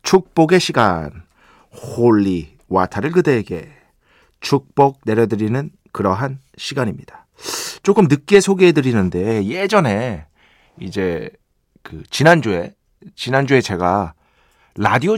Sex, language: male, Korean